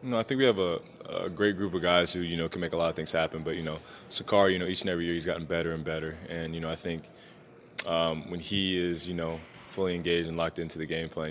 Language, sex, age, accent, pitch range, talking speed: English, male, 20-39, American, 80-85 Hz, 280 wpm